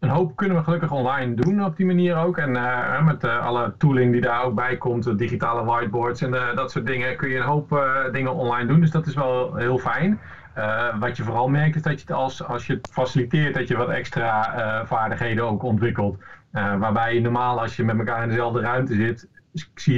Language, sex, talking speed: Dutch, male, 230 wpm